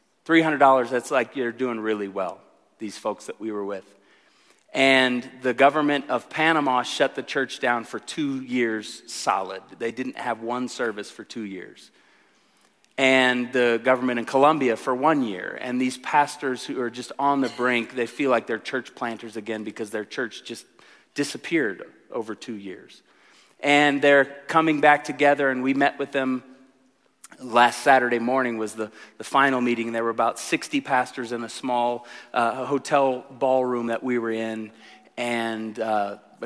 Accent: American